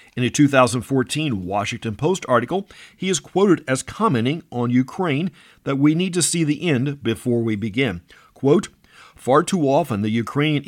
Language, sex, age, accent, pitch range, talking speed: English, male, 50-69, American, 115-150 Hz, 165 wpm